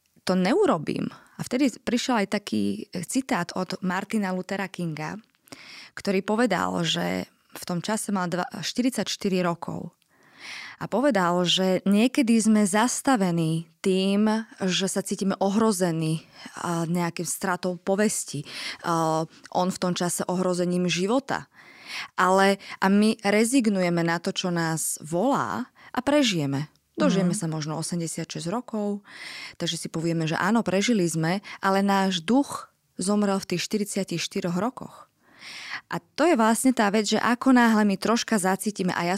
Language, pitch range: Slovak, 180-225 Hz